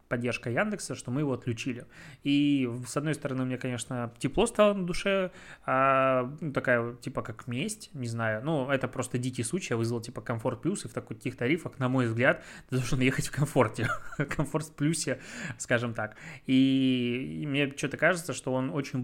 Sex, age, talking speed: male, 20-39, 185 wpm